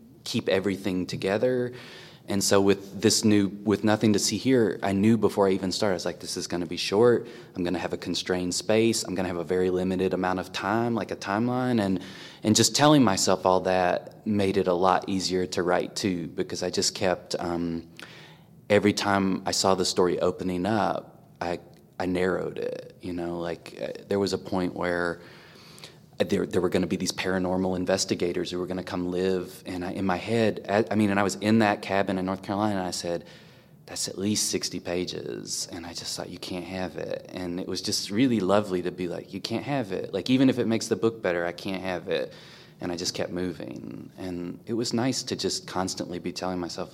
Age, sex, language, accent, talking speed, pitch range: 20-39, male, English, American, 220 wpm, 90-105 Hz